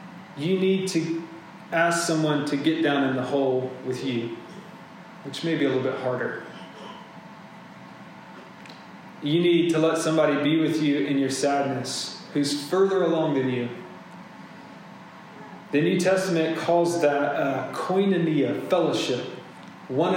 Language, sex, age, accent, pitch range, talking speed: English, male, 30-49, American, 140-170 Hz, 135 wpm